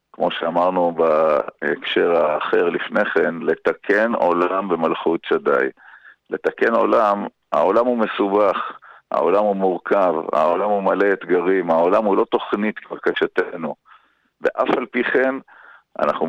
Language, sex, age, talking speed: Hebrew, male, 50-69, 110 wpm